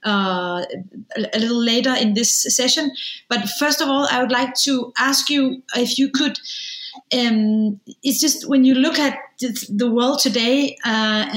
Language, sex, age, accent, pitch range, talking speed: English, female, 30-49, Danish, 215-265 Hz, 170 wpm